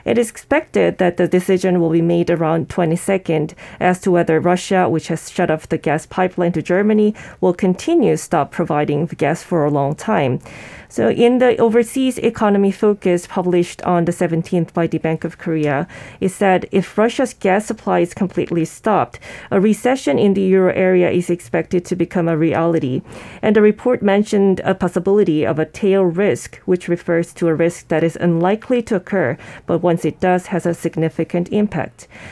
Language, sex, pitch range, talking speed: English, female, 170-200 Hz, 185 wpm